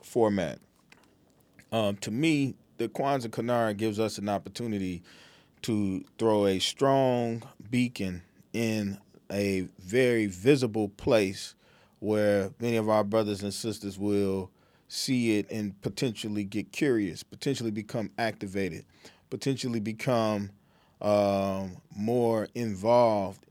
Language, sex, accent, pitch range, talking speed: English, male, American, 100-120 Hz, 110 wpm